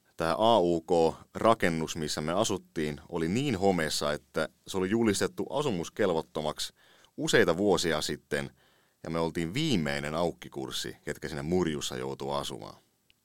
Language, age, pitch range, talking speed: English, 30-49, 75-100 Hz, 120 wpm